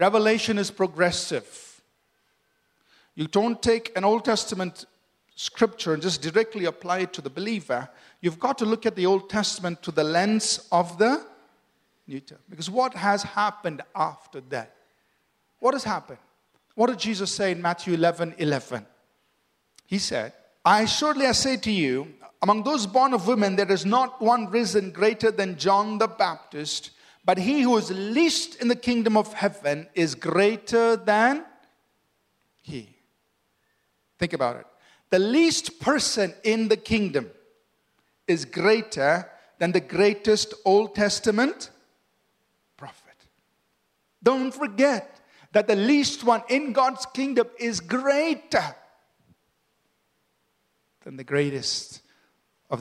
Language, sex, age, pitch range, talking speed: English, male, 50-69, 175-235 Hz, 135 wpm